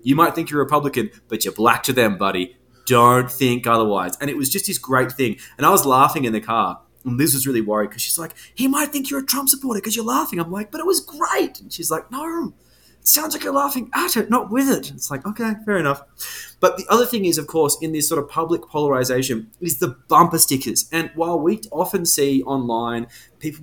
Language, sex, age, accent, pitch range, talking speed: English, male, 20-39, Australian, 120-185 Hz, 245 wpm